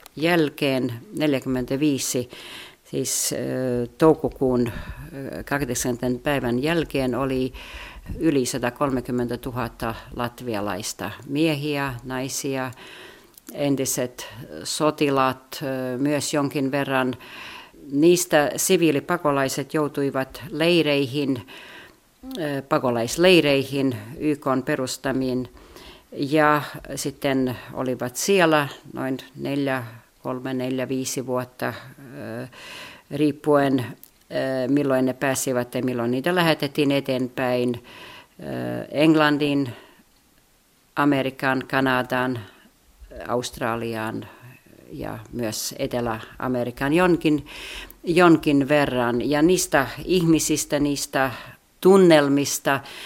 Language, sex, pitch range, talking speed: Finnish, female, 125-150 Hz, 70 wpm